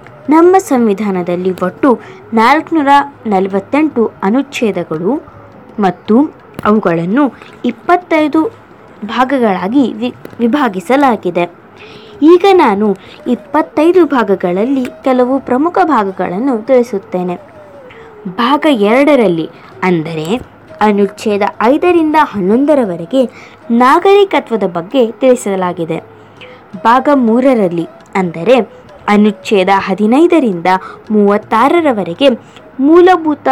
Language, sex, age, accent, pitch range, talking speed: Kannada, female, 20-39, native, 195-280 Hz, 65 wpm